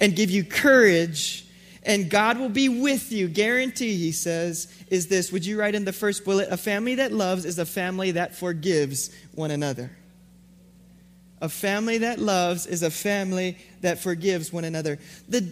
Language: English